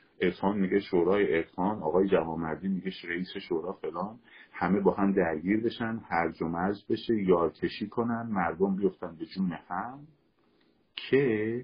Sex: male